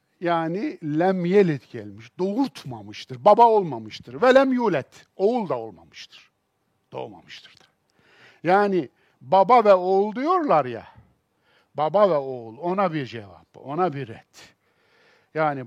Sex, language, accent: male, Turkish, native